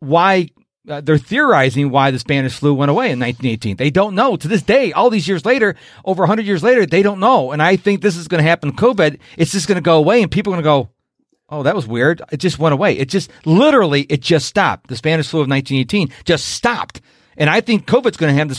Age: 40-59